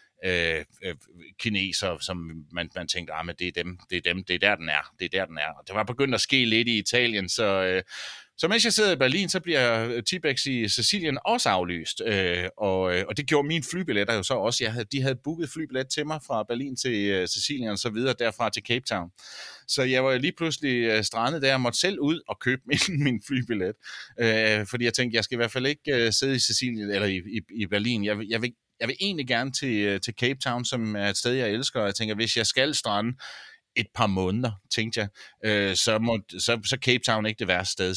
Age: 30-49